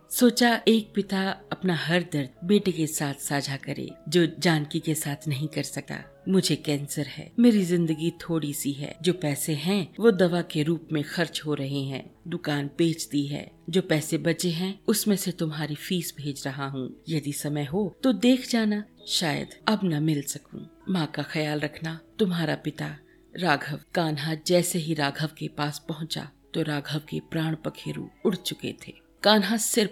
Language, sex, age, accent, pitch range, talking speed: Hindi, female, 50-69, native, 150-180 Hz, 175 wpm